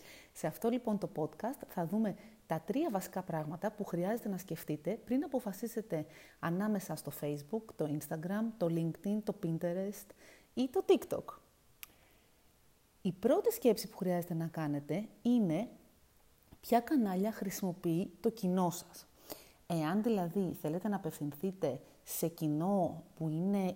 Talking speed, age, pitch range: 130 wpm, 30-49, 165-225 Hz